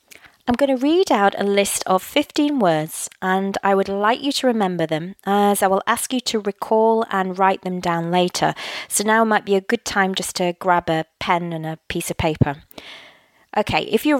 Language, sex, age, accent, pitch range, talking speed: English, female, 20-39, British, 180-220 Hz, 210 wpm